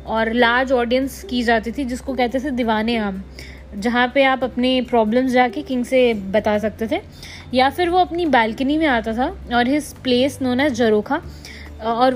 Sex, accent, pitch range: female, native, 240-295 Hz